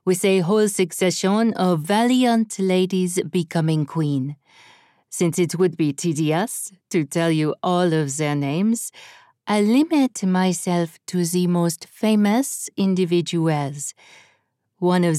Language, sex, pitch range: English, female, 160-205 Hz